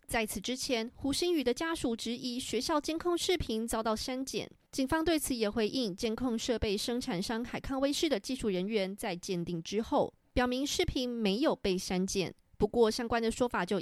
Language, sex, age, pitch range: Chinese, female, 20-39, 200-270 Hz